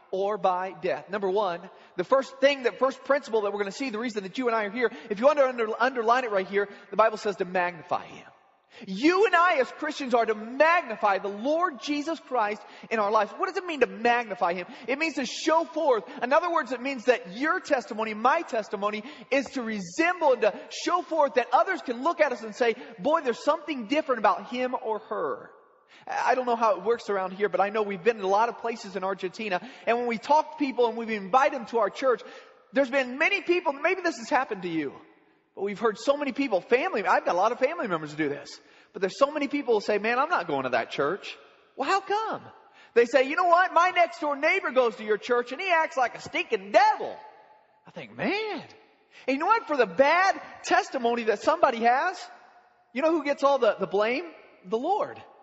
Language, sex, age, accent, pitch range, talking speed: English, male, 30-49, American, 215-310 Hz, 235 wpm